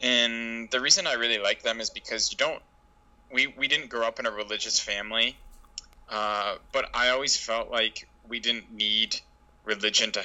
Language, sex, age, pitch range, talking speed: English, male, 20-39, 105-115 Hz, 180 wpm